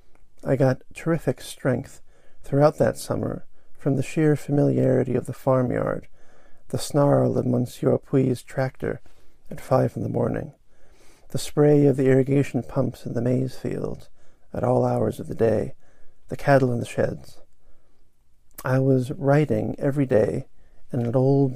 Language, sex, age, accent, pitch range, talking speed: English, male, 50-69, American, 120-135 Hz, 150 wpm